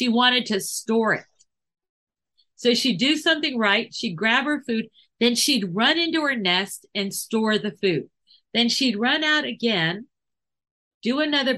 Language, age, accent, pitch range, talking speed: English, 50-69, American, 190-240 Hz, 160 wpm